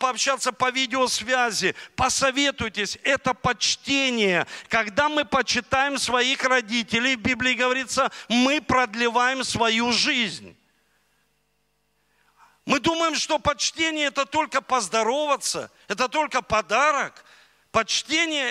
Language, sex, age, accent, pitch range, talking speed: Russian, male, 50-69, native, 240-285 Hz, 95 wpm